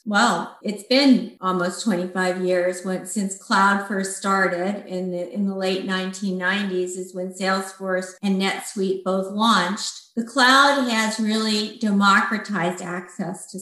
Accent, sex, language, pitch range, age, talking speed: American, female, English, 185-220 Hz, 50-69, 135 wpm